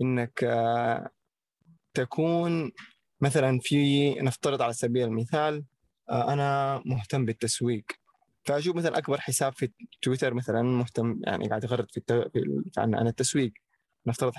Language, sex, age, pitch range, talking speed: Arabic, male, 20-39, 120-145 Hz, 110 wpm